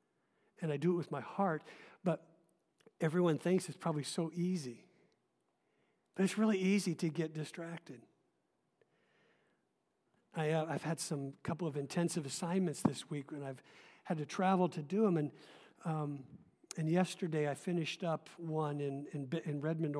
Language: English